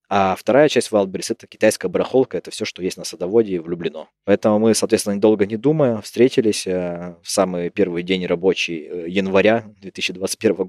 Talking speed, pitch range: 165 wpm, 90-110 Hz